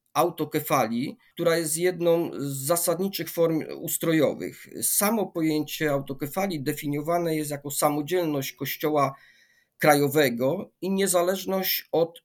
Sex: male